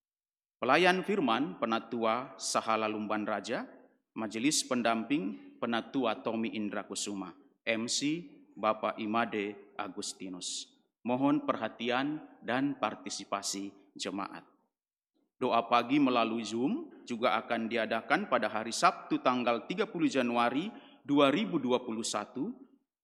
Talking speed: 90 wpm